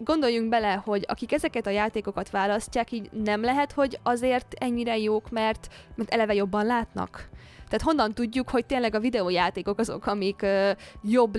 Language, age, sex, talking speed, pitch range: Hungarian, 20-39, female, 160 wpm, 195-235 Hz